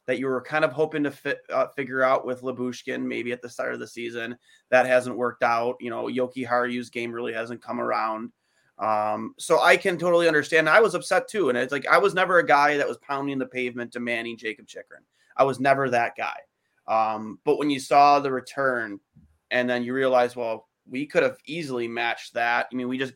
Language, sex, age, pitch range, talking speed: English, male, 30-49, 125-150 Hz, 225 wpm